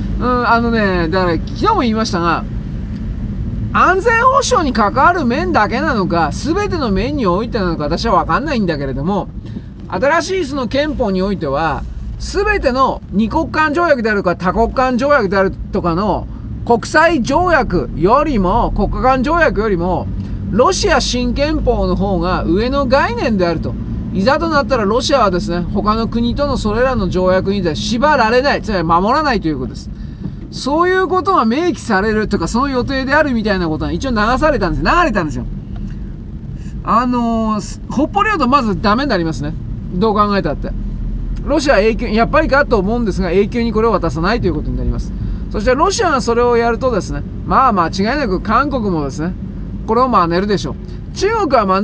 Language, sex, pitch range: Japanese, male, 190-275 Hz